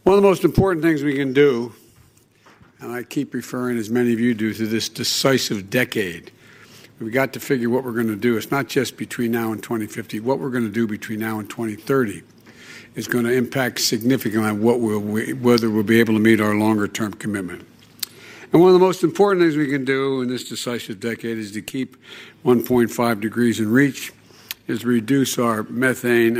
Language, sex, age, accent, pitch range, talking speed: English, male, 60-79, American, 115-140 Hz, 200 wpm